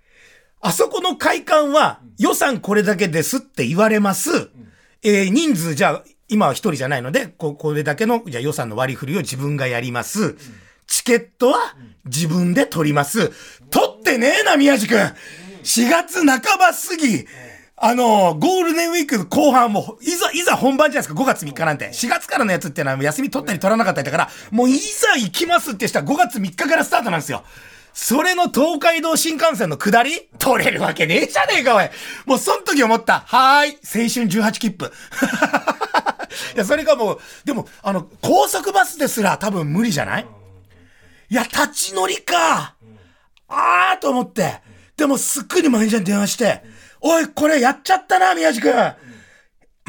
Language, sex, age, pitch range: Japanese, male, 40-59, 180-305 Hz